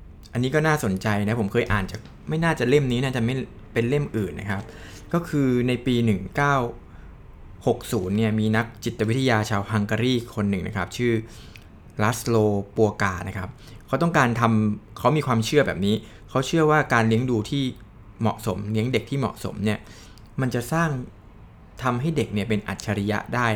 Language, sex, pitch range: Thai, male, 100-125 Hz